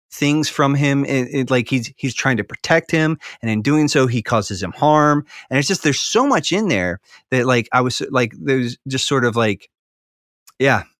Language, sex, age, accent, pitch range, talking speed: English, male, 30-49, American, 110-140 Hz, 200 wpm